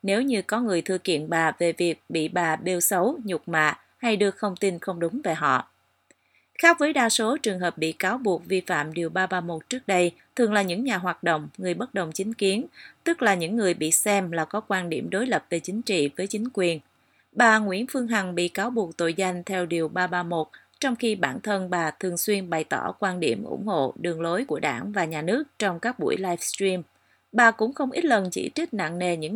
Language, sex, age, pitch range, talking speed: Vietnamese, female, 20-39, 170-220 Hz, 235 wpm